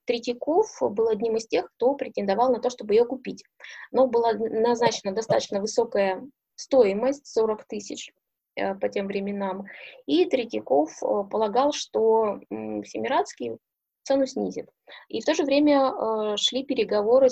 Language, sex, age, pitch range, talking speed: Russian, female, 20-39, 195-250 Hz, 130 wpm